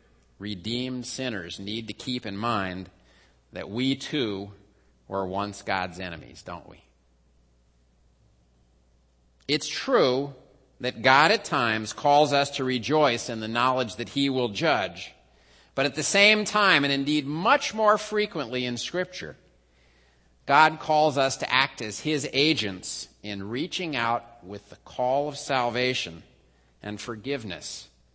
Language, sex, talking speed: English, male, 135 wpm